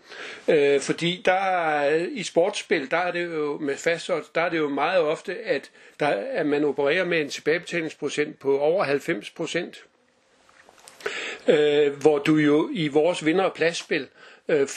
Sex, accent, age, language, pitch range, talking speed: male, native, 50-69, Danish, 150-180 Hz, 150 wpm